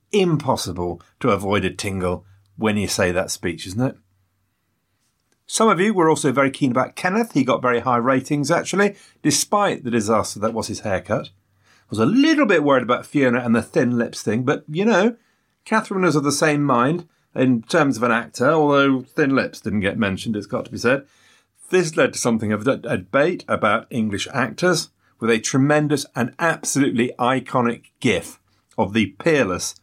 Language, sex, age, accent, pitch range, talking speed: English, male, 40-59, British, 100-145 Hz, 185 wpm